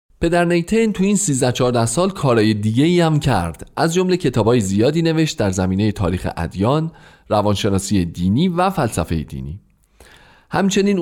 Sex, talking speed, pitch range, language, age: male, 135 wpm, 100-150 Hz, Persian, 40-59